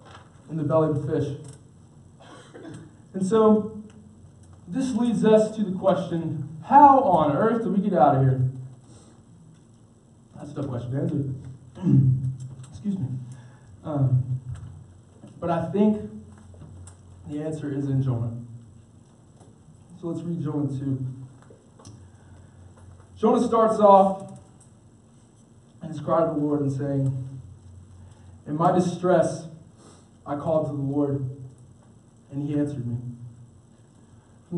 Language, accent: English, American